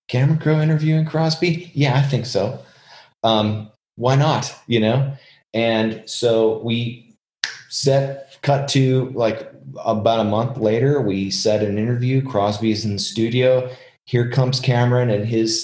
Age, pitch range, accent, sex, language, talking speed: 30-49, 105-130 Hz, American, male, English, 140 wpm